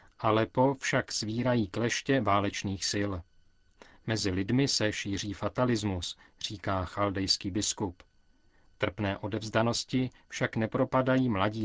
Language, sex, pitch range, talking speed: Czech, male, 100-120 Hz, 100 wpm